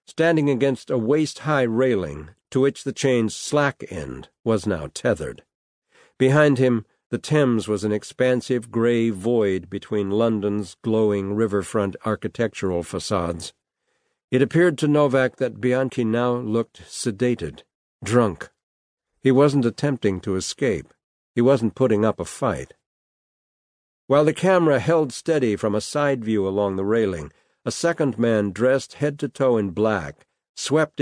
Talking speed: 140 wpm